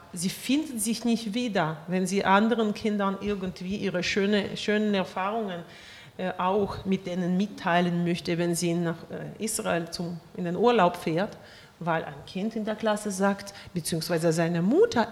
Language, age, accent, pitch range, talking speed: German, 40-59, German, 175-225 Hz, 155 wpm